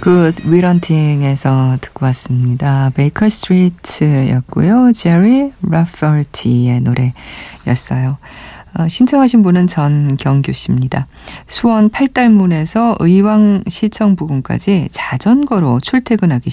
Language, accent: Korean, native